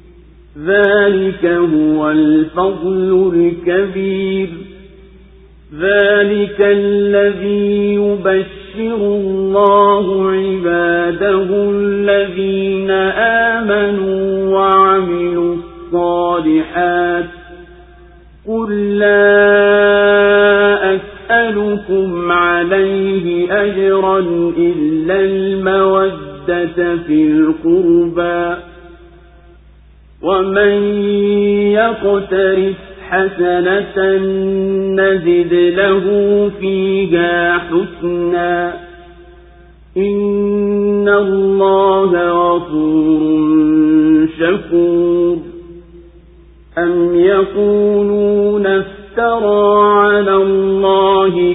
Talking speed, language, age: 45 wpm, Swahili, 50-69